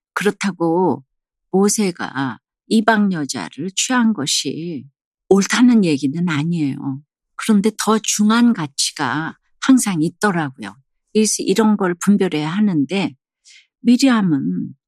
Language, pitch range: Korean, 155-215 Hz